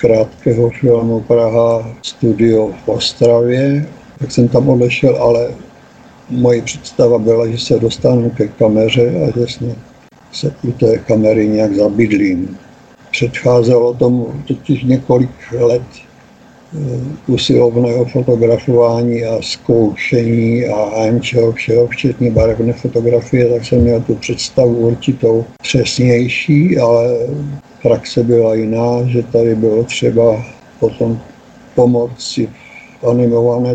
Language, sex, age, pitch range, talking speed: Czech, male, 60-79, 115-125 Hz, 110 wpm